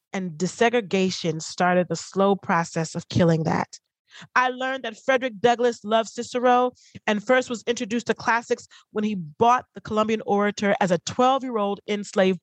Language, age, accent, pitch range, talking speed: English, 30-49, American, 170-245 Hz, 155 wpm